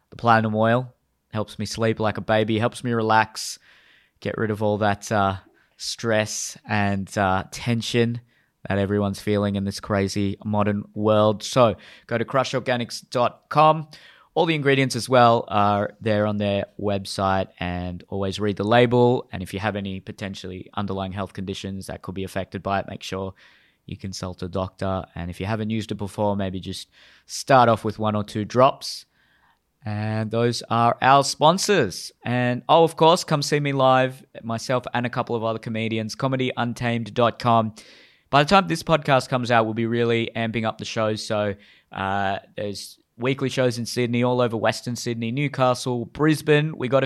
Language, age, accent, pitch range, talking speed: English, 20-39, Australian, 100-130 Hz, 175 wpm